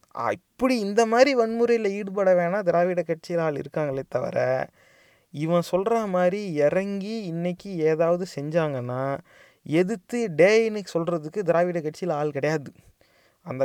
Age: 30-49